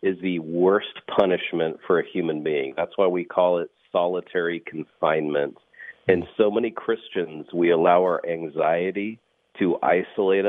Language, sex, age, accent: English, male, 40-59, American